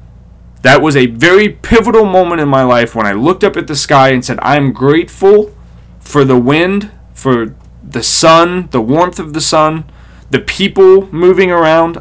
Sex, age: male, 30-49